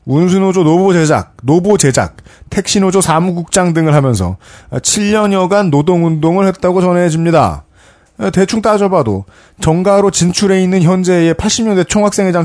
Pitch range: 140-195 Hz